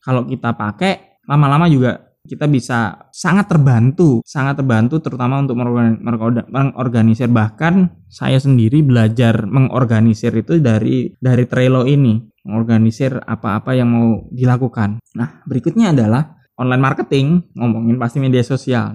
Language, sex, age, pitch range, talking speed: Indonesian, male, 20-39, 115-145 Hz, 130 wpm